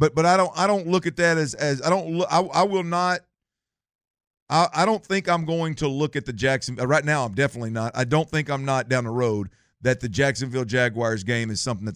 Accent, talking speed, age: American, 245 wpm, 50-69